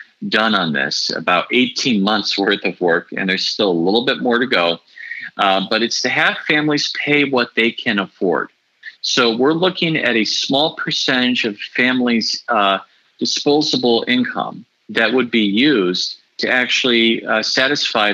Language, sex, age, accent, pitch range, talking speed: English, male, 40-59, American, 110-145 Hz, 160 wpm